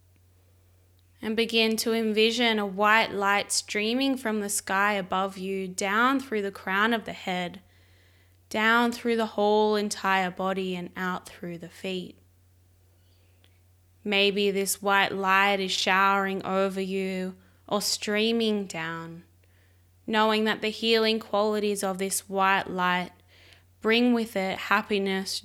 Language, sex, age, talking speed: English, female, 10-29, 130 wpm